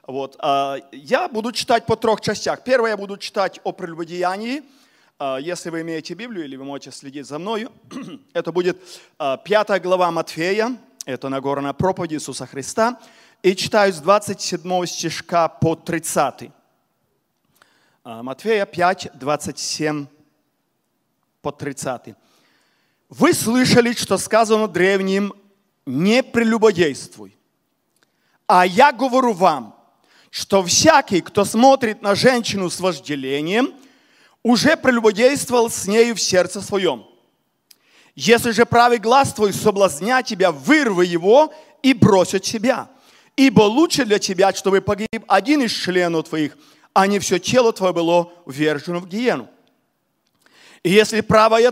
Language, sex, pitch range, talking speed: Russian, male, 175-235 Hz, 125 wpm